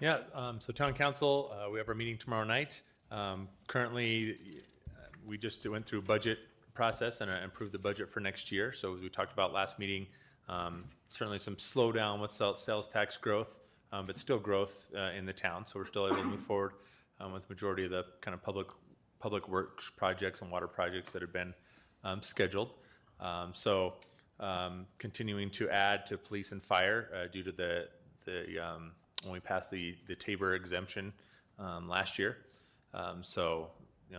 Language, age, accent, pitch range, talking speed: English, 30-49, American, 90-110 Hz, 190 wpm